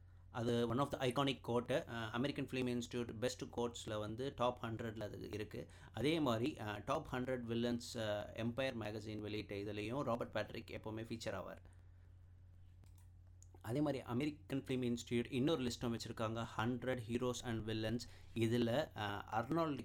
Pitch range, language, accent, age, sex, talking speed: 105-125 Hz, Tamil, native, 30-49, male, 145 wpm